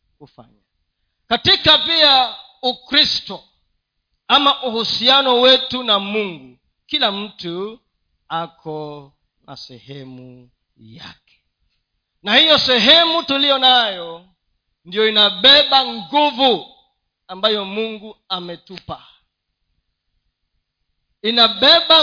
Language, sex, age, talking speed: Swahili, male, 40-59, 75 wpm